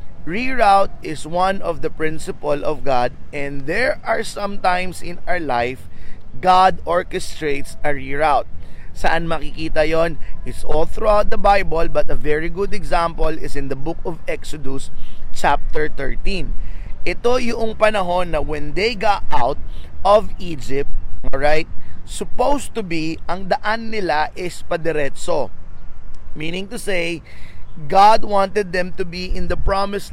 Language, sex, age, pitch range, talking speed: Filipino, male, 30-49, 150-200 Hz, 140 wpm